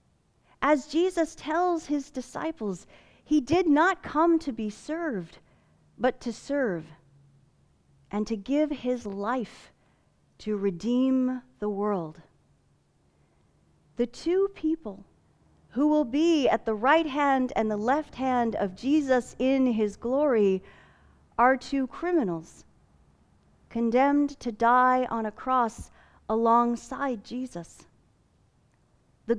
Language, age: English, 40-59